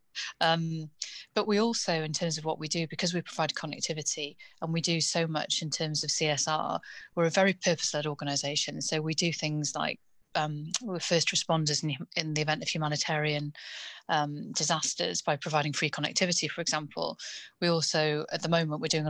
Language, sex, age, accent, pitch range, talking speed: English, female, 30-49, British, 155-175 Hz, 180 wpm